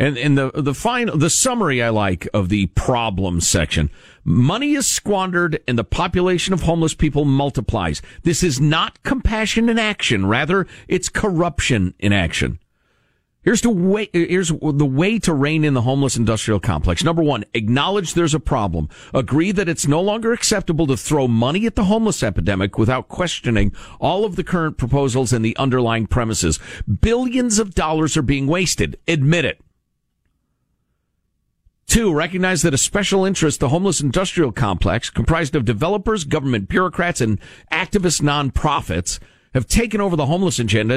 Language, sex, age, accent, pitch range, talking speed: English, male, 50-69, American, 110-170 Hz, 160 wpm